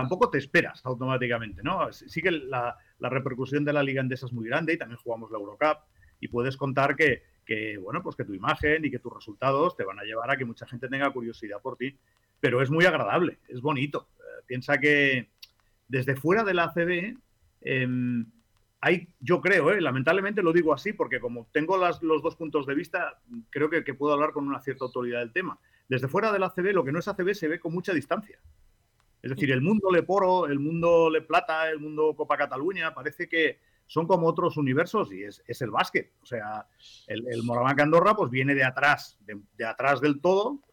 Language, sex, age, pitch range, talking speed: Spanish, male, 40-59, 120-170 Hz, 210 wpm